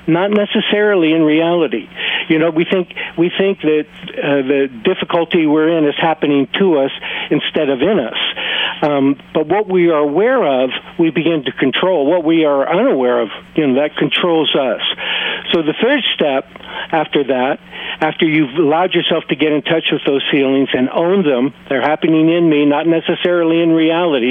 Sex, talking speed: male, 180 wpm